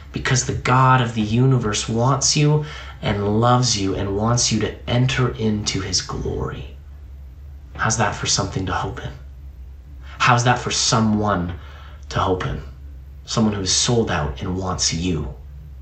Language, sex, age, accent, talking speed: English, male, 30-49, American, 155 wpm